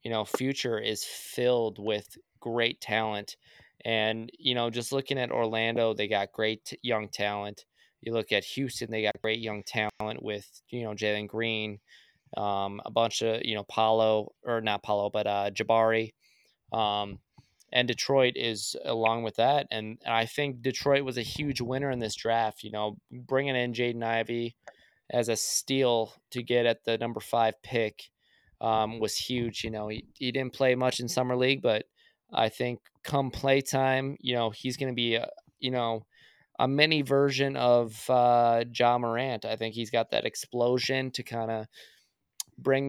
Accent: American